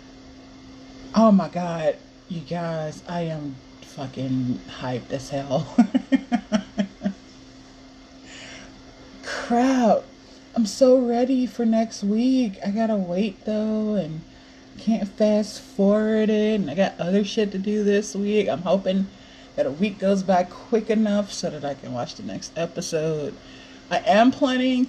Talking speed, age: 135 wpm, 30-49